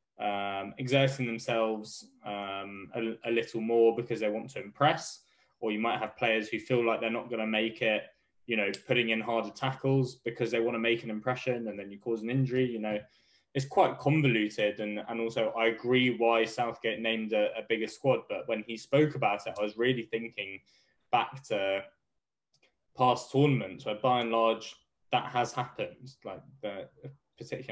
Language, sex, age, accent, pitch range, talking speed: English, male, 10-29, British, 105-125 Hz, 190 wpm